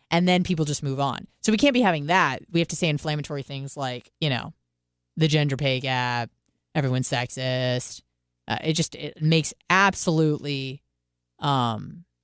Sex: female